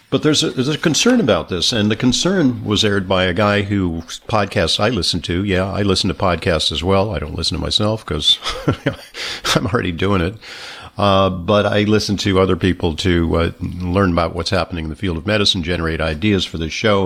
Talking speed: 215 wpm